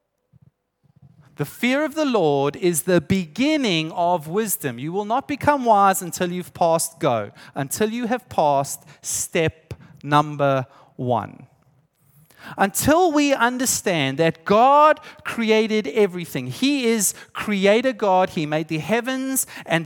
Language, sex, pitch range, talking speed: English, male, 150-230 Hz, 125 wpm